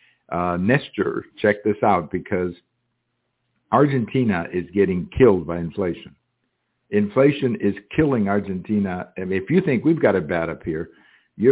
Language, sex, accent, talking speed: English, male, American, 150 wpm